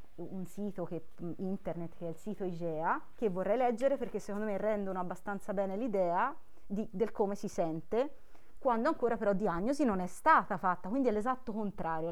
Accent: native